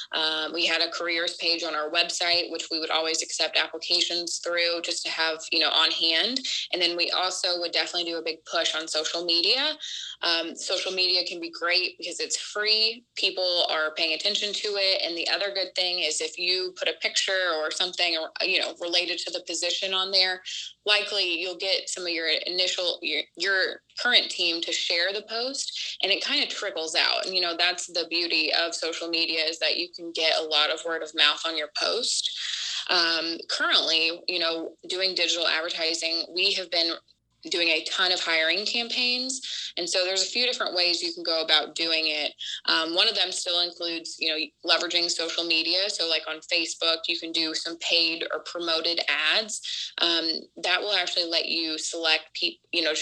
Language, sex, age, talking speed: English, female, 20-39, 200 wpm